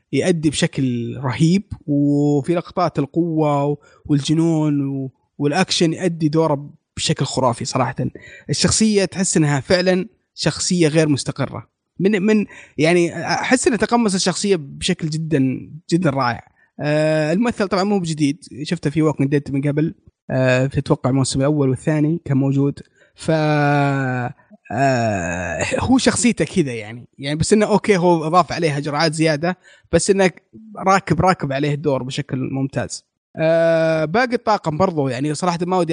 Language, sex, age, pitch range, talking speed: Arabic, male, 20-39, 140-175 Hz, 135 wpm